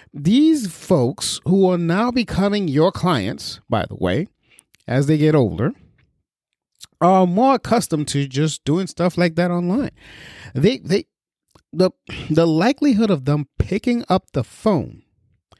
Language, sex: English, male